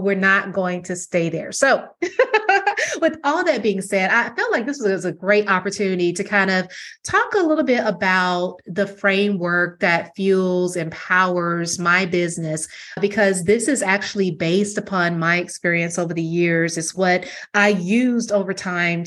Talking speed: 165 wpm